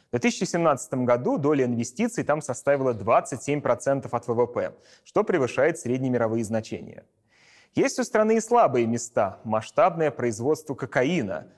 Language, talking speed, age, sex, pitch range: Russian, 130 wpm, 30-49, male, 125-160 Hz